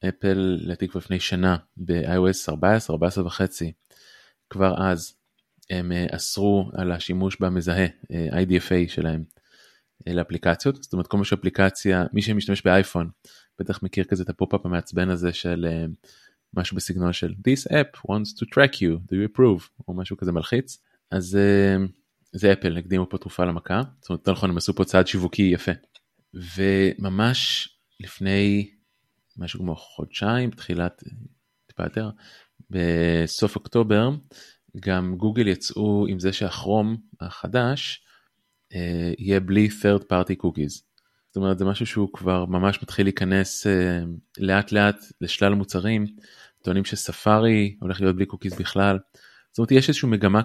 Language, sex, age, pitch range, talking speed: Hebrew, male, 20-39, 90-105 Hz, 135 wpm